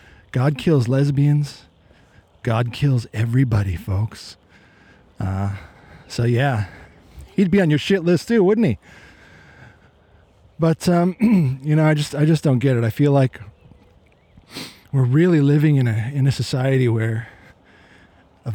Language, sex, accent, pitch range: English, male, American, 110-160 Hz